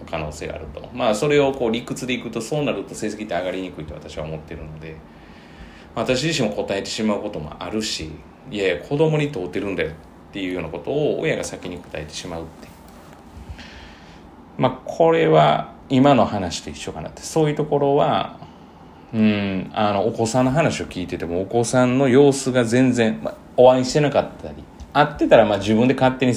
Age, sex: 30-49, male